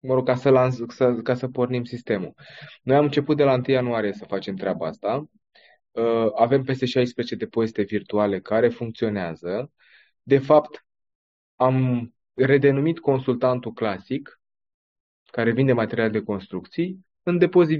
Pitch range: 115-150 Hz